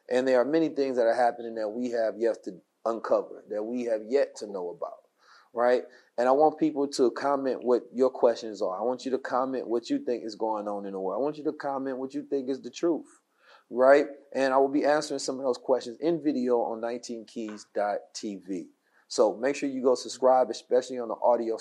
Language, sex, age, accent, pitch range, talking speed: English, male, 30-49, American, 115-135 Hz, 225 wpm